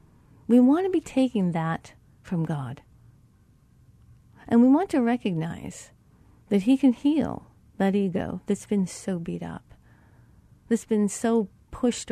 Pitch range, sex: 135-225 Hz, female